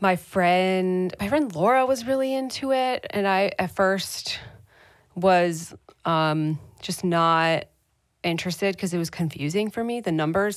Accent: American